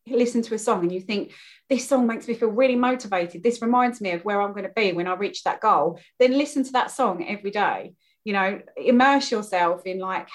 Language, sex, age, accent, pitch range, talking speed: English, female, 30-49, British, 185-235 Hz, 240 wpm